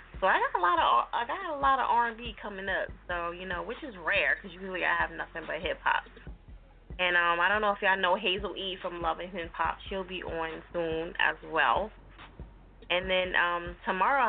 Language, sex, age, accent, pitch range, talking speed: English, female, 20-39, American, 165-200 Hz, 230 wpm